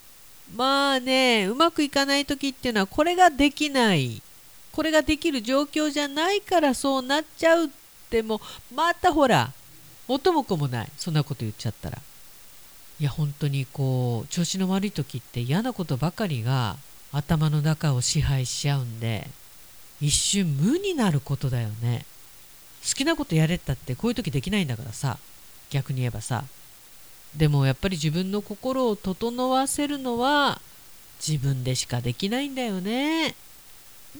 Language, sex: Japanese, female